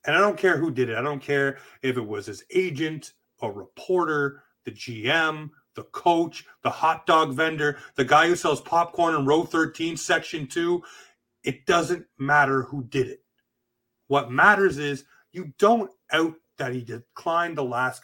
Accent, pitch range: American, 125-165 Hz